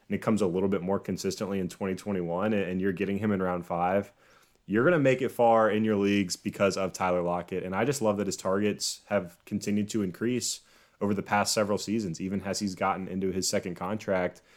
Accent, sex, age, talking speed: American, male, 20-39, 225 wpm